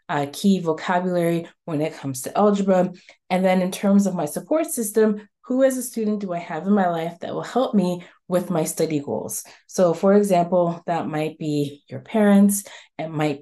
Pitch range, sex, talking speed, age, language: 170-230 Hz, female, 195 wpm, 20-39, English